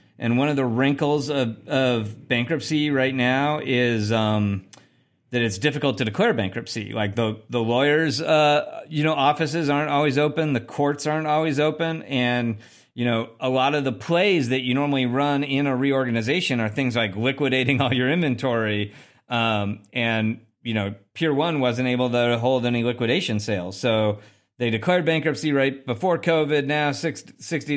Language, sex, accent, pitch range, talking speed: English, male, American, 105-135 Hz, 170 wpm